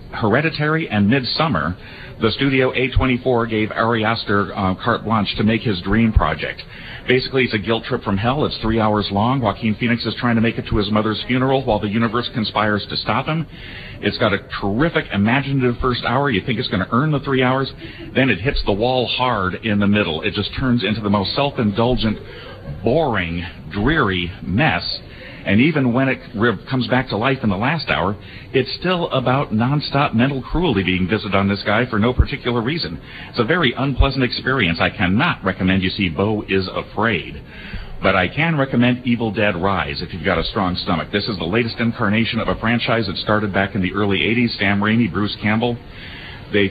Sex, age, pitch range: male, 40-59, 100-125 Hz